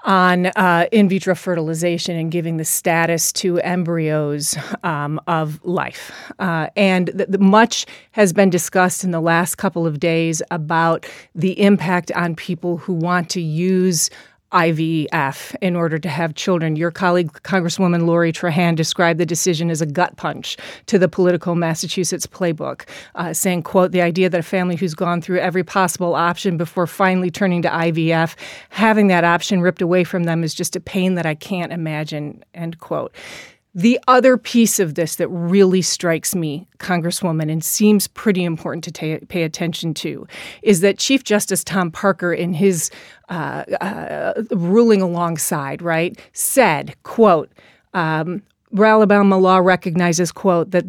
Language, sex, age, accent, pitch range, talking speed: English, female, 30-49, American, 165-190 Hz, 155 wpm